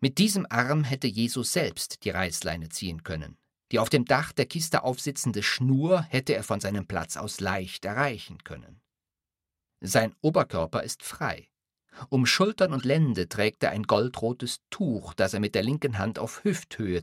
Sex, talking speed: male, 170 wpm